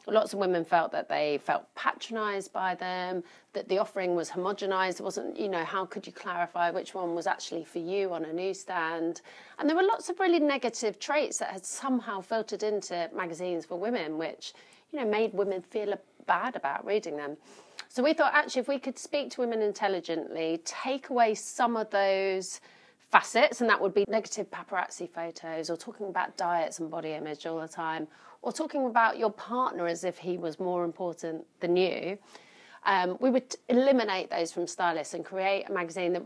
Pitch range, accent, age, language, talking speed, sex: 165-215 Hz, British, 30-49, English, 195 wpm, female